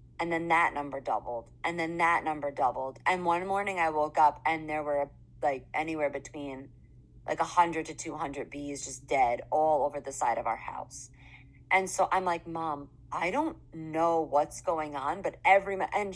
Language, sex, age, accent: English, female, 30-49, American